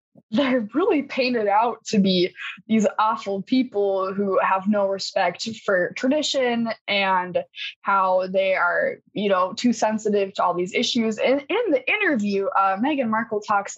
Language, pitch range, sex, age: English, 195-265 Hz, female, 10-29